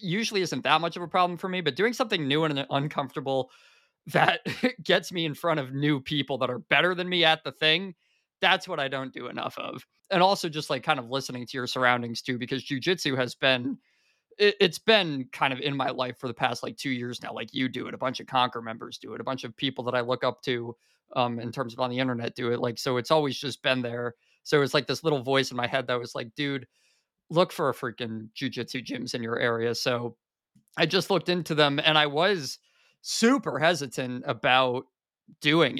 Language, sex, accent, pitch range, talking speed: English, male, American, 125-155 Hz, 230 wpm